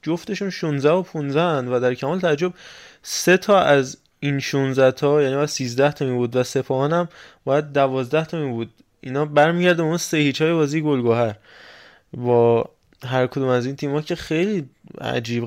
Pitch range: 115-150 Hz